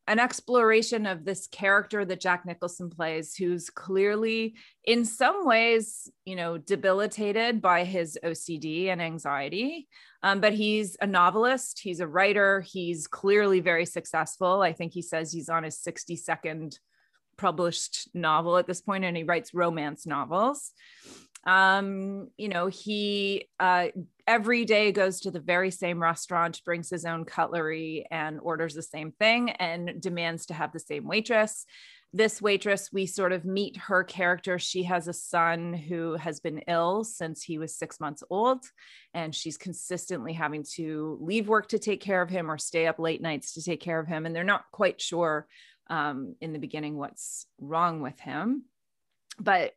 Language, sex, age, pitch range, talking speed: English, female, 20-39, 165-205 Hz, 170 wpm